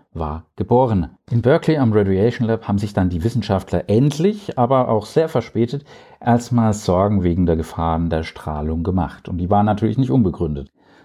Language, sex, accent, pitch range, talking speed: German, male, German, 90-115 Hz, 170 wpm